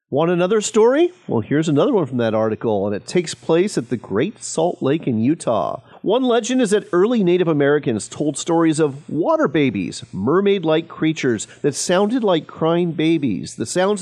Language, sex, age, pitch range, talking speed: English, male, 40-59, 125-185 Hz, 180 wpm